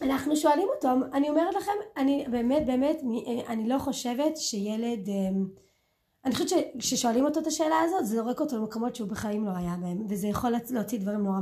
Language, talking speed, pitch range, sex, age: Hebrew, 190 wpm, 225-315 Hz, female, 20-39